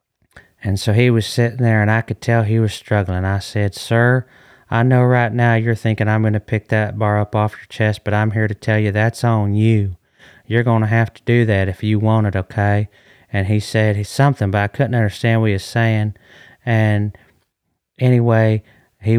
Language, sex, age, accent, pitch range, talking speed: English, male, 30-49, American, 105-125 Hz, 215 wpm